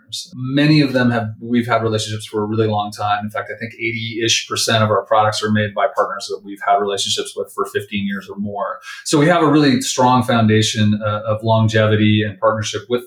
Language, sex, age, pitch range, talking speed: English, male, 30-49, 110-135 Hz, 220 wpm